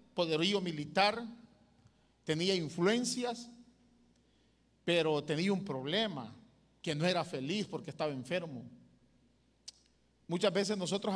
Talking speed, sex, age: 95 wpm, male, 50-69